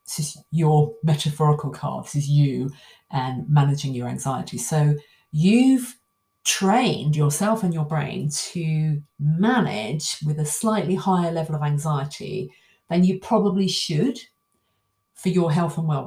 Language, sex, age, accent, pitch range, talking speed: English, female, 40-59, British, 145-180 Hz, 140 wpm